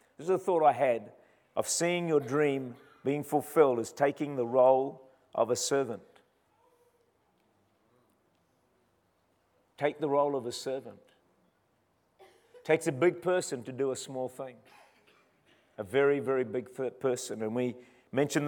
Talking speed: 135 wpm